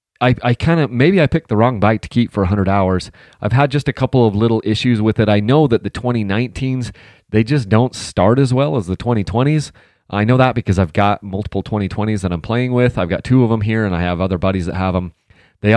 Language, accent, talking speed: English, American, 250 wpm